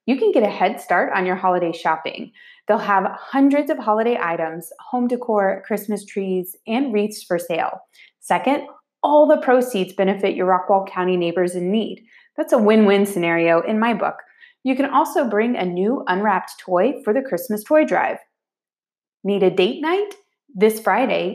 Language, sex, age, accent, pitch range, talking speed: English, female, 30-49, American, 180-255 Hz, 170 wpm